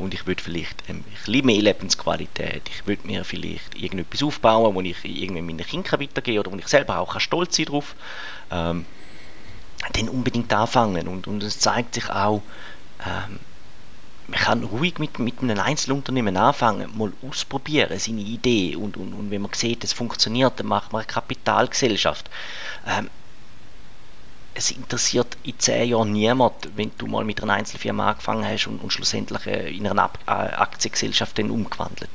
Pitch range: 95-125 Hz